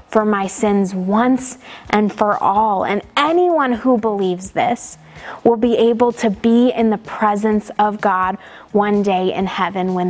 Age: 20-39